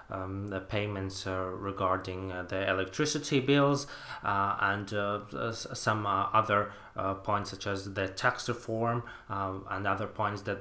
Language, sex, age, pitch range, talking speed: English, male, 20-39, 105-125 Hz, 155 wpm